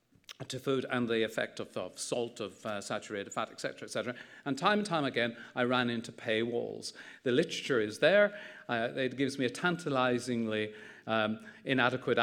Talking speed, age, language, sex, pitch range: 170 wpm, 40-59, English, male, 120-150 Hz